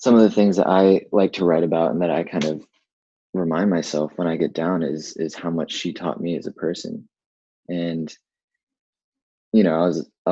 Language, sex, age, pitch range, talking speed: English, male, 20-39, 80-90 Hz, 215 wpm